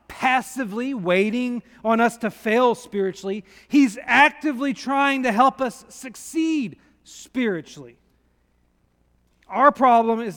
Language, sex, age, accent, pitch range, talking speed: English, male, 40-59, American, 185-260 Hz, 105 wpm